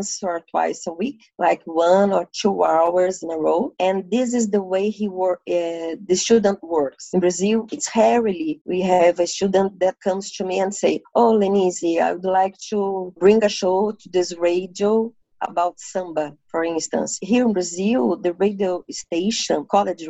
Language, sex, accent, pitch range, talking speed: English, female, Brazilian, 175-205 Hz, 180 wpm